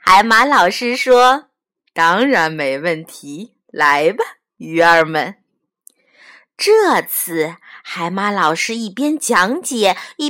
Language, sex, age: Chinese, female, 30-49